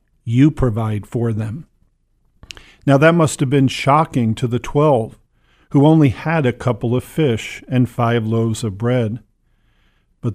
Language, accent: English, American